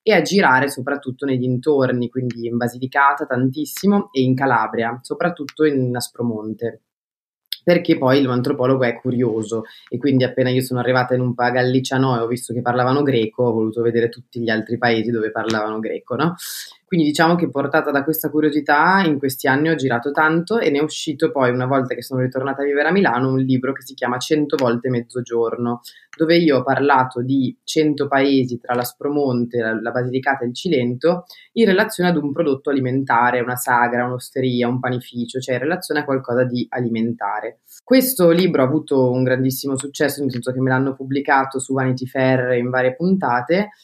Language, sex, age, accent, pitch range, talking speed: Italian, female, 20-39, native, 125-150 Hz, 185 wpm